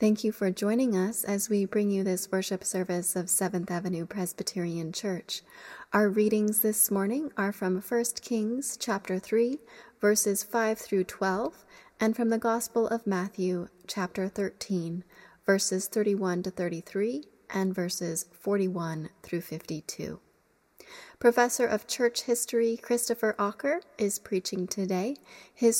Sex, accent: female, American